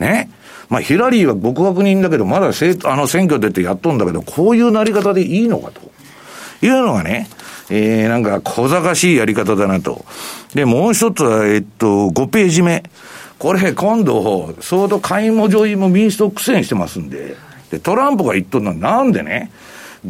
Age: 60-79